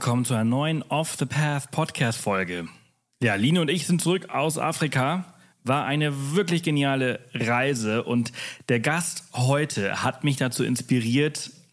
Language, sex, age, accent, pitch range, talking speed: German, male, 30-49, German, 115-140 Hz, 135 wpm